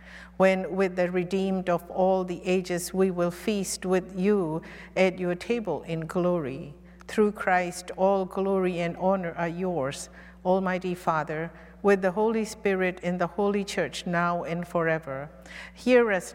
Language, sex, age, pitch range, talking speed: English, female, 50-69, 170-190 Hz, 150 wpm